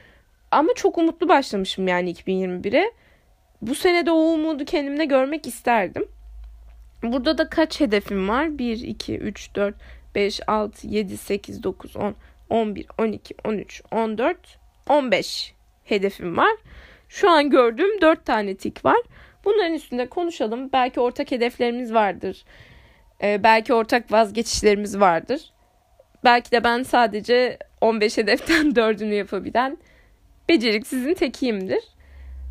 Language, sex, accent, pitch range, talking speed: Turkish, female, native, 210-290 Hz, 120 wpm